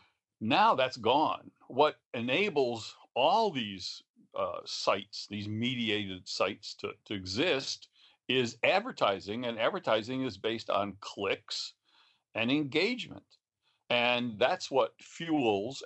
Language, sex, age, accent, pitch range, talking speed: English, male, 60-79, American, 125-185 Hz, 110 wpm